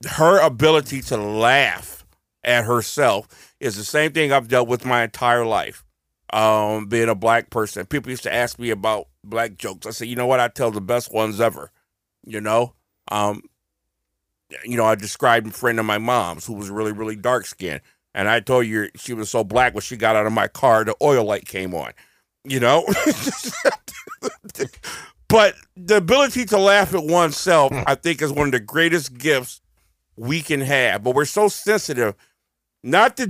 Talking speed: 185 wpm